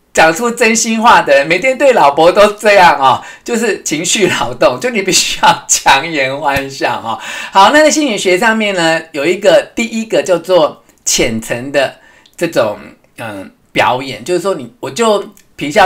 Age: 50-69